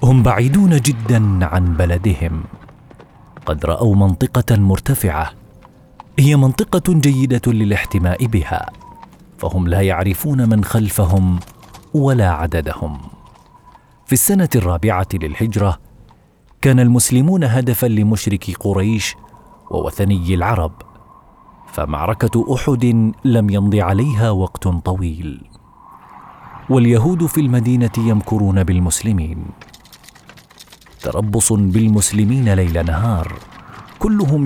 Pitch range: 95-125 Hz